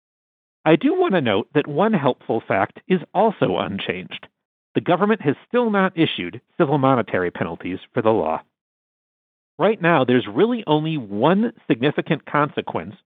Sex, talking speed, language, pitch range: male, 145 wpm, English, 120-185 Hz